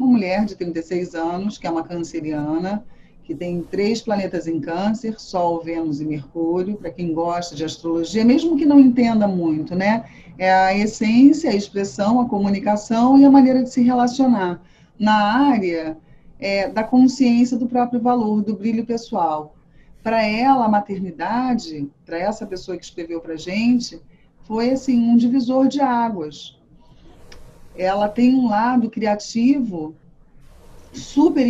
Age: 40-59